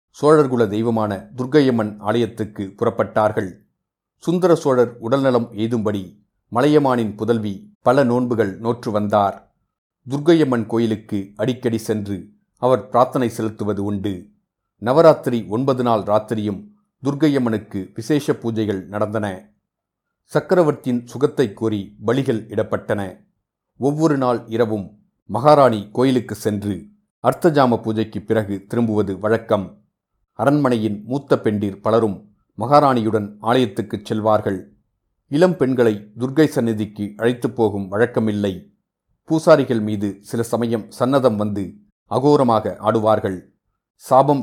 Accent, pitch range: native, 105-130 Hz